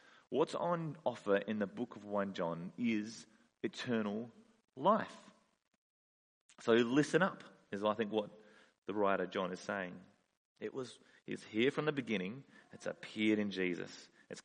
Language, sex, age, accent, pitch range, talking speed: English, male, 30-49, Australian, 100-130 Hz, 150 wpm